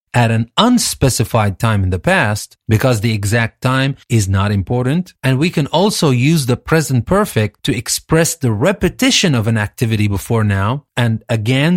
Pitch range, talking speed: 115-155 Hz, 170 wpm